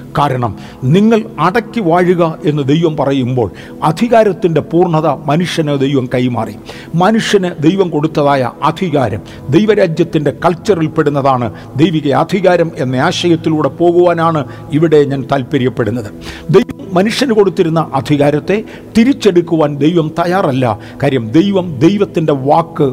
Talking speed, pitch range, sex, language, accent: 95 wpm, 140-185 Hz, male, Malayalam, native